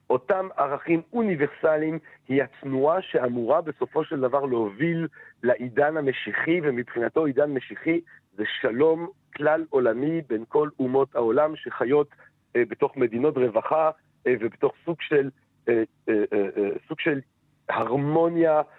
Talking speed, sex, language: 125 wpm, male, Hebrew